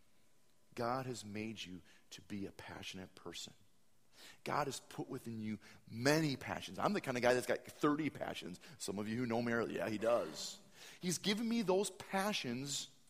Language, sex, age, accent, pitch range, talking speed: English, male, 40-59, American, 110-160 Hz, 180 wpm